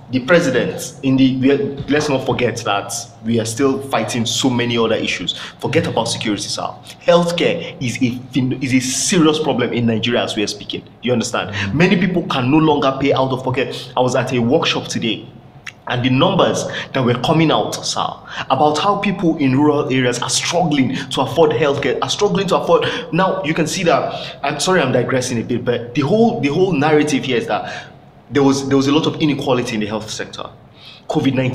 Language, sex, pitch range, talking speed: English, male, 120-155 Hz, 200 wpm